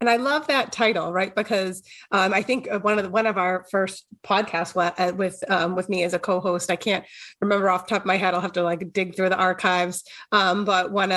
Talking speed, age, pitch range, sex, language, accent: 250 wpm, 30-49, 185-220 Hz, female, English, American